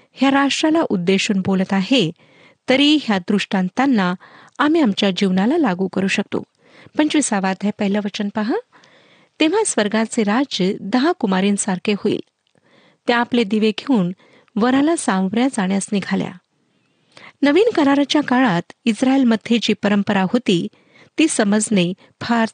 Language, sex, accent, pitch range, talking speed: Marathi, female, native, 200-270 Hz, 85 wpm